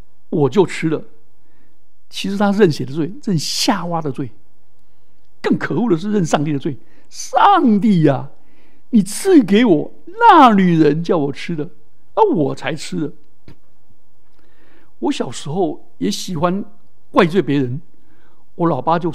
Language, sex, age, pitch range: Chinese, male, 60-79, 145-230 Hz